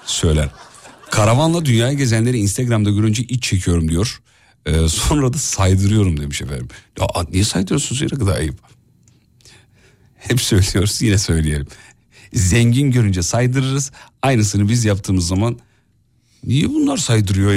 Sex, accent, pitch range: male, native, 95-130 Hz